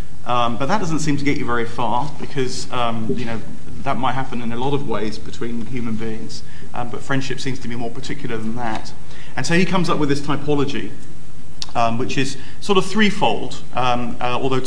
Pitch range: 120-145 Hz